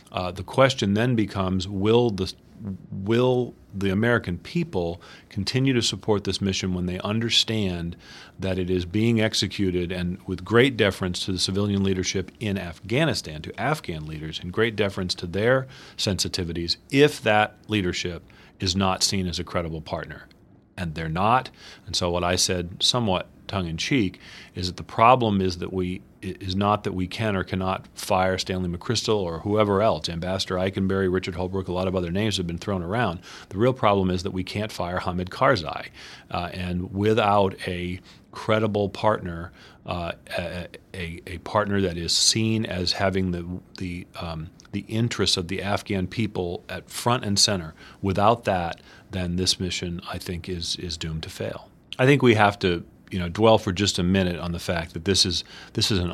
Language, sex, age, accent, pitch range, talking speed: English, male, 40-59, American, 90-105 Hz, 180 wpm